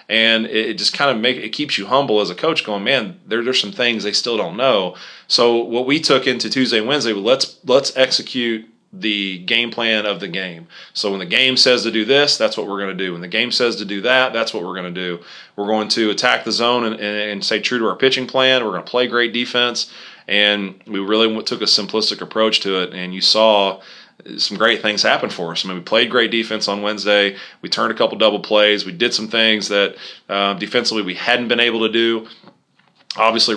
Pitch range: 95-115 Hz